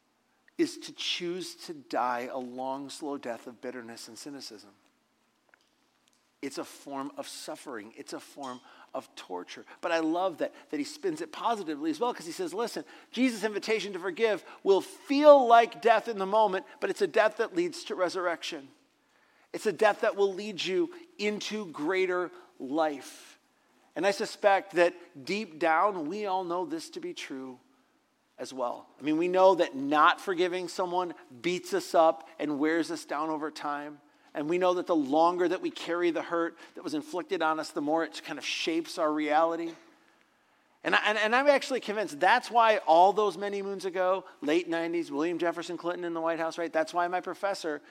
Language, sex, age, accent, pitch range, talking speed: English, male, 40-59, American, 160-225 Hz, 190 wpm